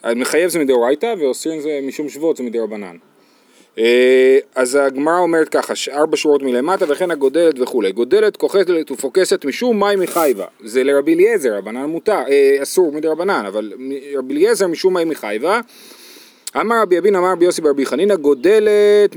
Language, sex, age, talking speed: Hebrew, male, 30-49, 155 wpm